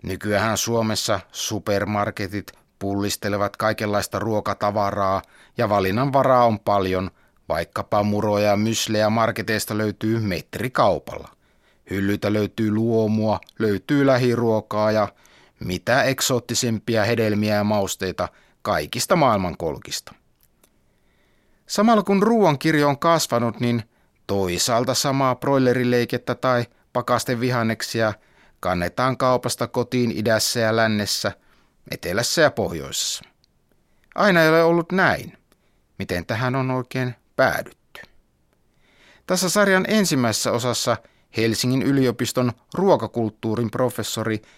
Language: Finnish